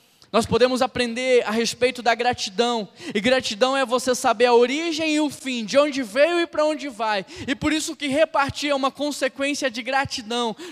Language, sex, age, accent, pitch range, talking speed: Portuguese, male, 10-29, Brazilian, 200-270 Hz, 190 wpm